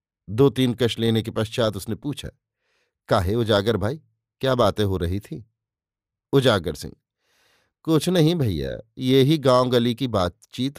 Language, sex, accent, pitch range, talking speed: Hindi, male, native, 110-150 Hz, 150 wpm